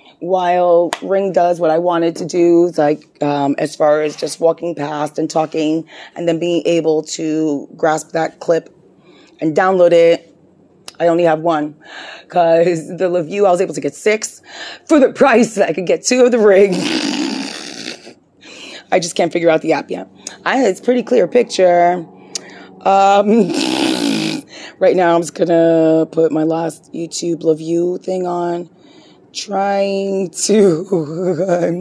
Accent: American